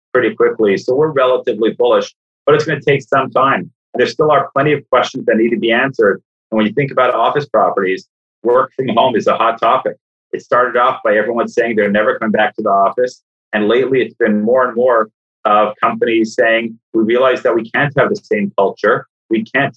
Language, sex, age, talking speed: English, male, 30-49, 220 wpm